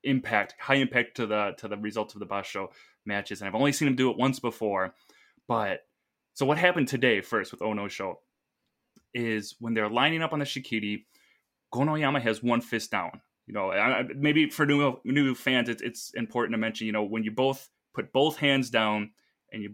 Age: 20-39